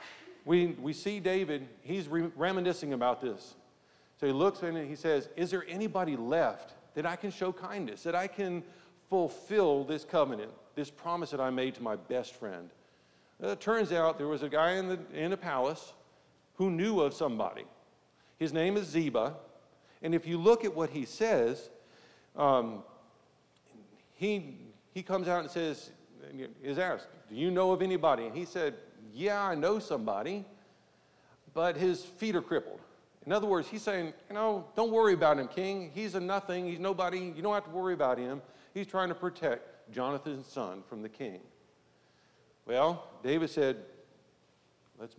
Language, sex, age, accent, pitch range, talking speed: English, male, 50-69, American, 140-190 Hz, 175 wpm